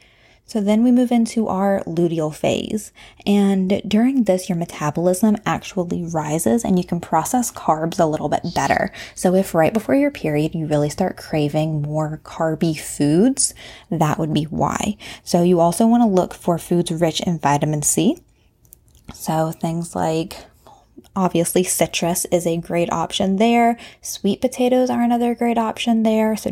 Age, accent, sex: 20-39, American, female